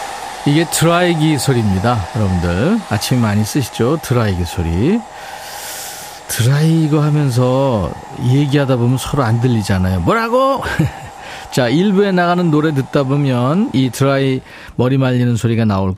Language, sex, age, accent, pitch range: Korean, male, 40-59, native, 110-155 Hz